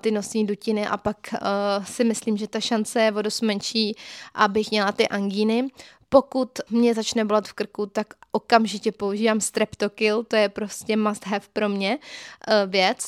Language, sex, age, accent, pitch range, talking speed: Czech, female, 20-39, native, 200-225 Hz, 165 wpm